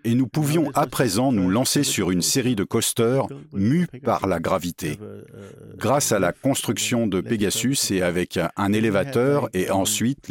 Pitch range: 100-120 Hz